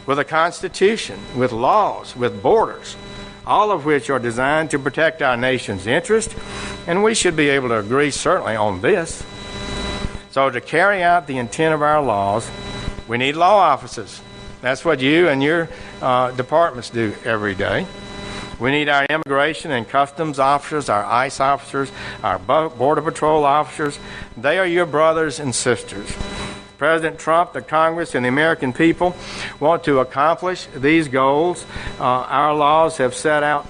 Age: 60-79